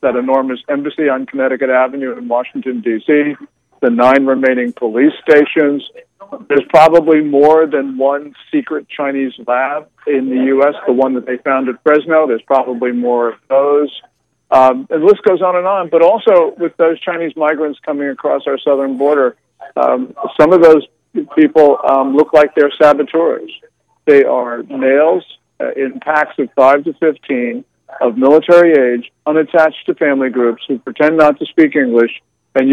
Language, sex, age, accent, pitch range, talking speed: English, male, 50-69, American, 135-155 Hz, 165 wpm